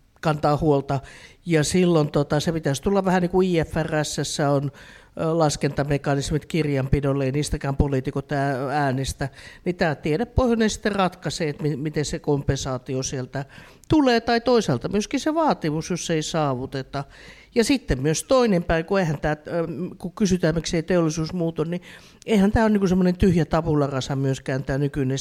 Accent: native